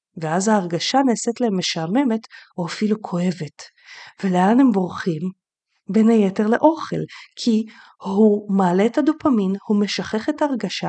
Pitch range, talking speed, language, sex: 195-255 Hz, 125 wpm, Hebrew, female